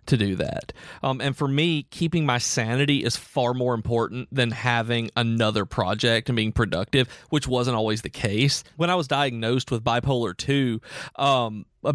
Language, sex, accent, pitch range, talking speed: English, male, American, 110-135 Hz, 170 wpm